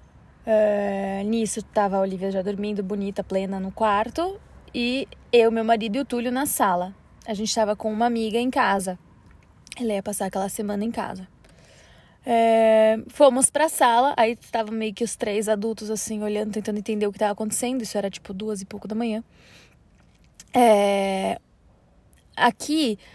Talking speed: 170 wpm